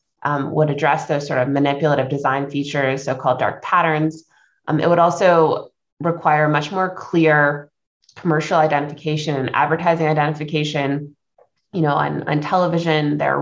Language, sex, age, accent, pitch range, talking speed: English, female, 20-39, American, 140-170 Hz, 145 wpm